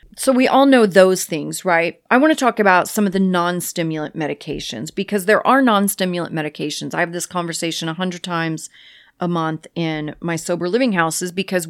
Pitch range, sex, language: 165-200 Hz, female, English